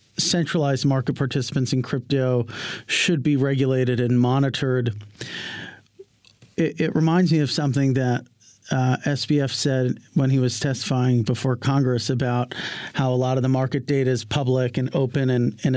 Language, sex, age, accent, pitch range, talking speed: English, male, 40-59, American, 125-145 Hz, 150 wpm